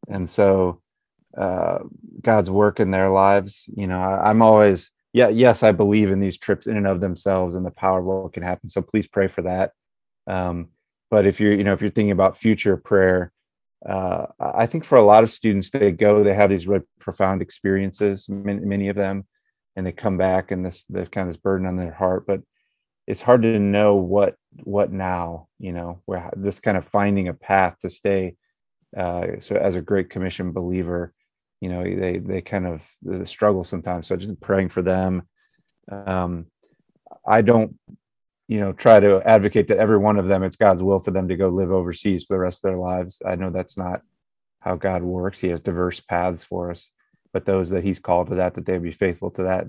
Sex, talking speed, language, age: male, 210 wpm, English, 30-49